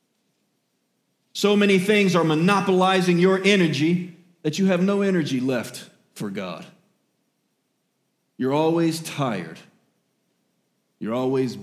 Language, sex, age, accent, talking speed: English, male, 40-59, American, 105 wpm